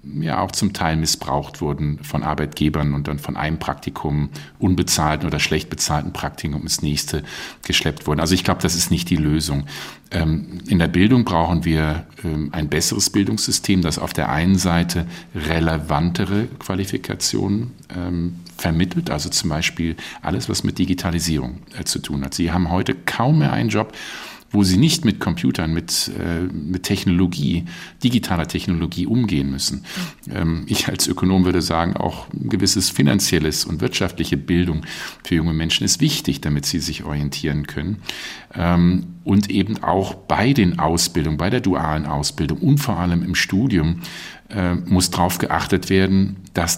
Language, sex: German, male